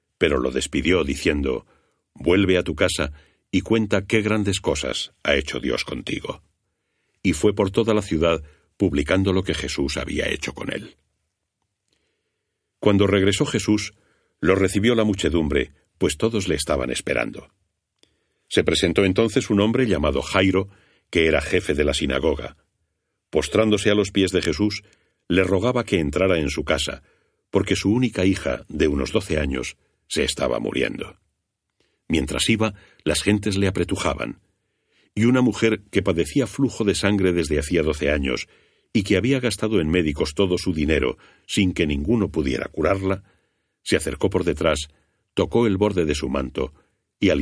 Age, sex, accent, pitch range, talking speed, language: 60-79, male, Spanish, 85-105 Hz, 155 wpm, Spanish